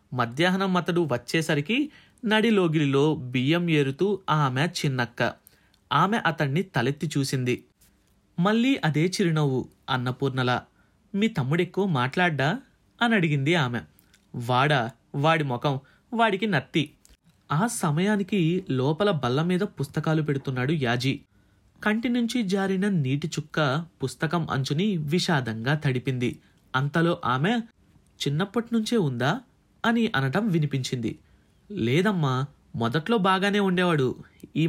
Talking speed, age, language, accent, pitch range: 90 wpm, 30-49, Telugu, native, 135-200 Hz